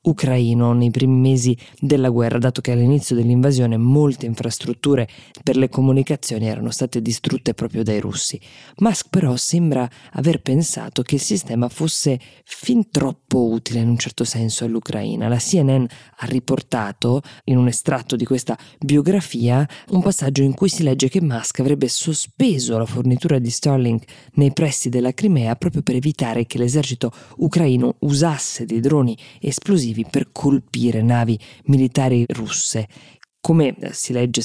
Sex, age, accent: female, 20-39, native